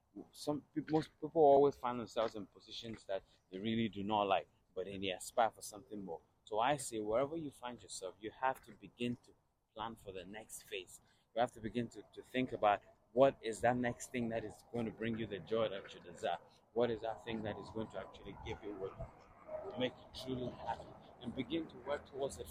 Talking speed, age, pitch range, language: 225 wpm, 30-49, 105-125 Hz, English